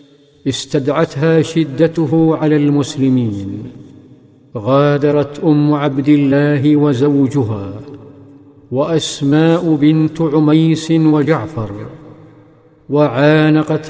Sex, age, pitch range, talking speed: male, 50-69, 135-155 Hz, 60 wpm